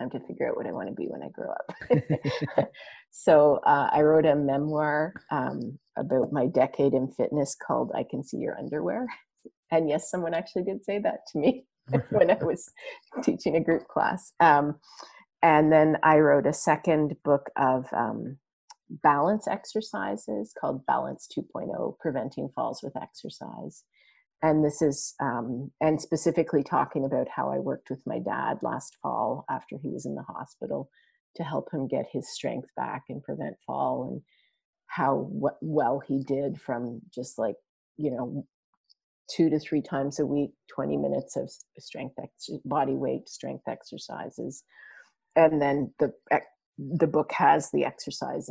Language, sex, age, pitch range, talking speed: English, female, 30-49, 140-165 Hz, 160 wpm